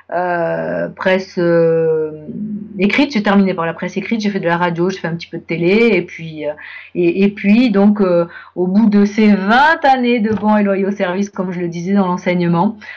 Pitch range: 170-210 Hz